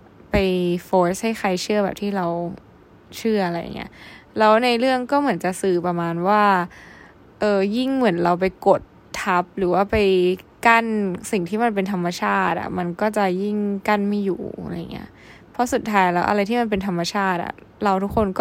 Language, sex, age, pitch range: Thai, female, 20-39, 185-230 Hz